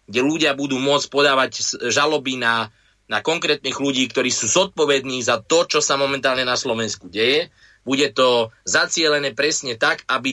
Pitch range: 115-140 Hz